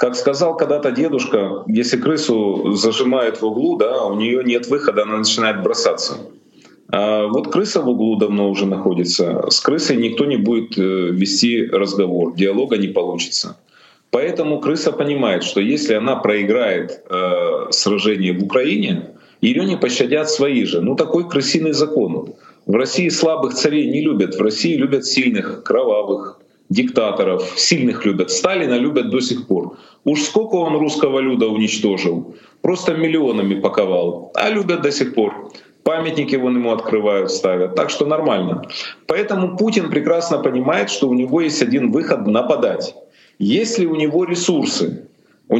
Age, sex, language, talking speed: 30-49, male, Russian, 145 wpm